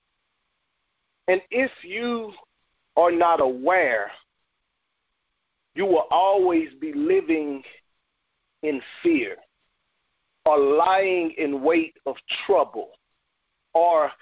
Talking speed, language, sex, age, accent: 85 wpm, English, male, 50-69, American